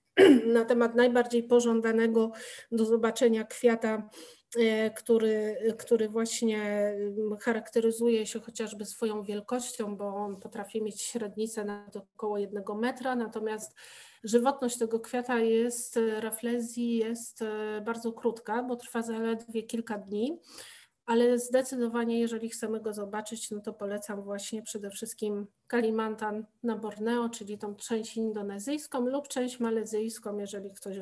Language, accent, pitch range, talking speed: Polish, native, 220-240 Hz, 120 wpm